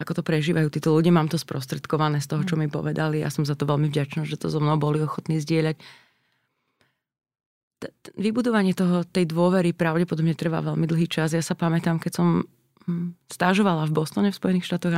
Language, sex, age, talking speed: Slovak, female, 30-49, 190 wpm